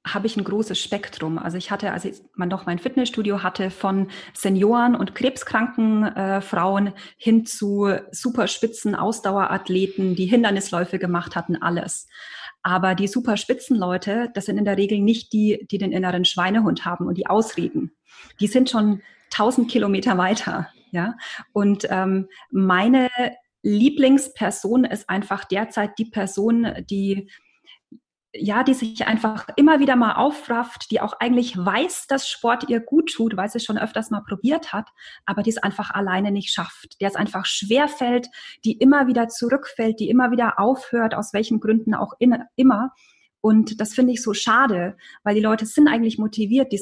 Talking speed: 165 wpm